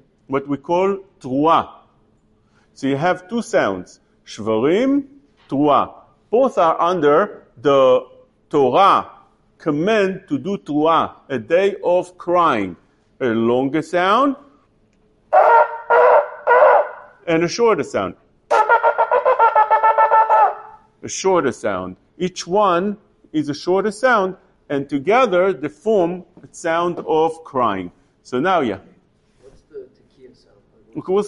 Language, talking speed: English, 100 wpm